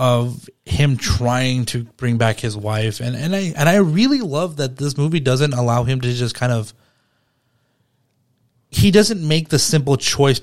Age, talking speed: 30-49, 180 wpm